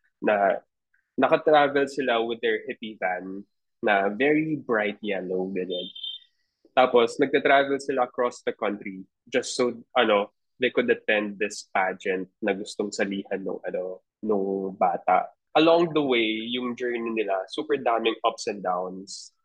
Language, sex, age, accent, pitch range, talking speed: Filipino, male, 20-39, native, 105-140 Hz, 135 wpm